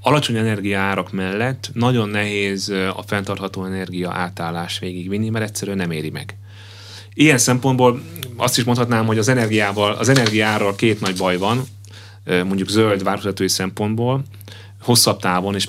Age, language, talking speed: 30-49, Hungarian, 140 wpm